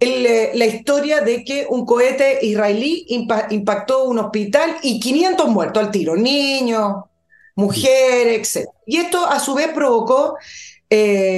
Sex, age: female, 40-59